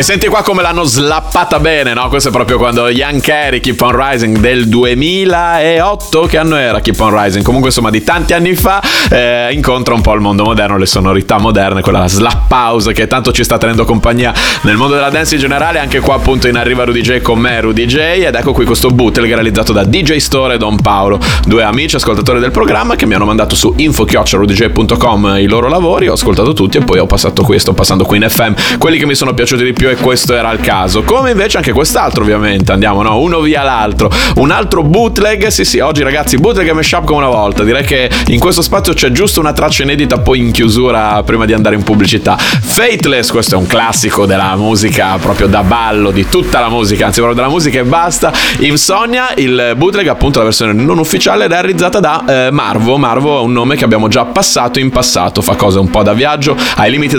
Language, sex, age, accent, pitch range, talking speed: Italian, male, 30-49, native, 110-140 Hz, 220 wpm